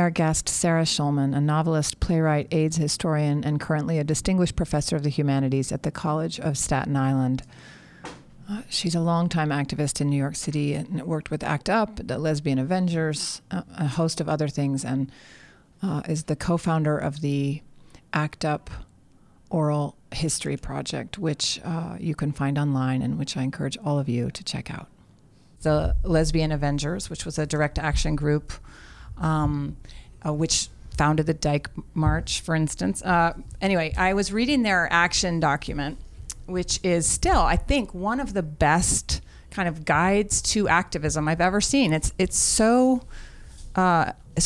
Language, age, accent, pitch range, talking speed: English, 40-59, American, 145-175 Hz, 160 wpm